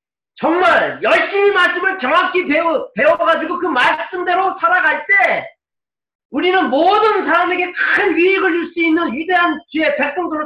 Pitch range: 290-355 Hz